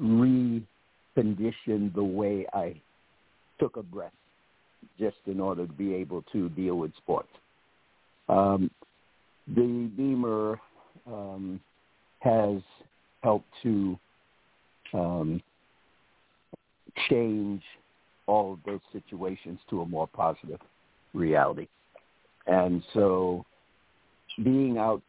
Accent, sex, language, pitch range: American, male, English, 95-110 Hz